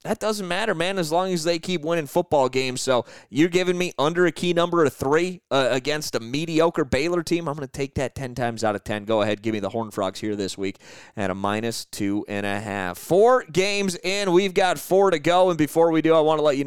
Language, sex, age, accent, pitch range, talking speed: English, male, 30-49, American, 125-170 Hz, 260 wpm